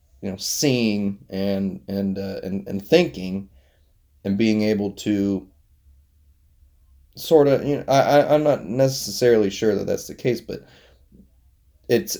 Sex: male